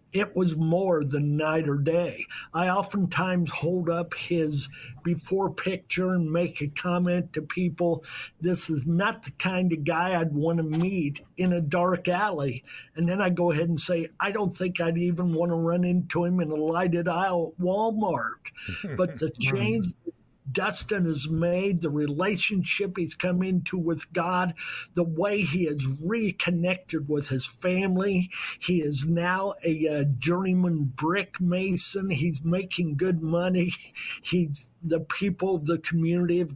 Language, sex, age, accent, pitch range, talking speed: English, male, 50-69, American, 155-180 Hz, 160 wpm